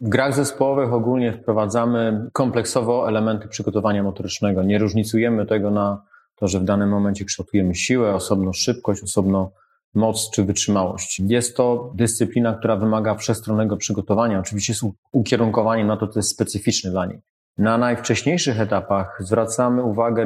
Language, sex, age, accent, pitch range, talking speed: Polish, male, 30-49, native, 105-120 Hz, 140 wpm